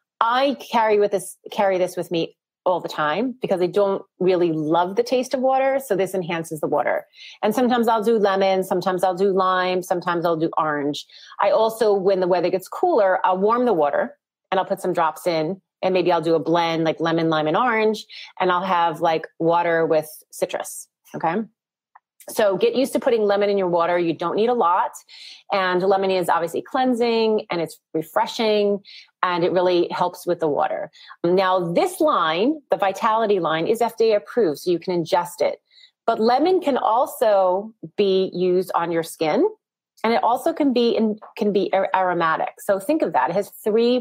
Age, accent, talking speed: 30-49, American, 195 wpm